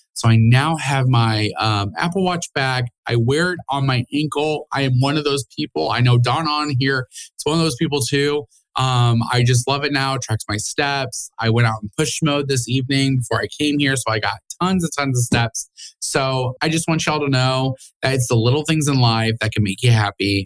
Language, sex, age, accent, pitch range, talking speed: English, male, 20-39, American, 115-150 Hz, 240 wpm